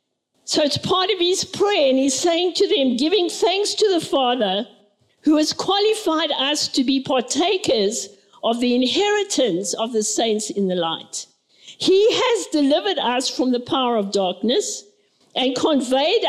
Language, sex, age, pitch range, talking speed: English, female, 50-69, 230-340 Hz, 160 wpm